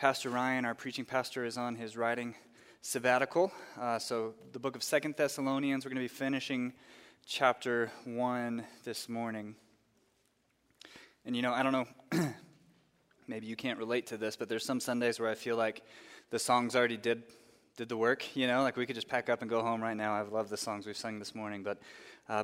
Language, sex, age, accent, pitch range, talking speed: English, male, 20-39, American, 115-135 Hz, 205 wpm